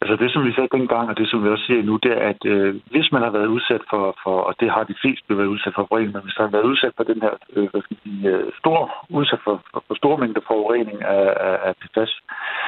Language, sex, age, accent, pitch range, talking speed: Danish, male, 60-79, native, 100-115 Hz, 230 wpm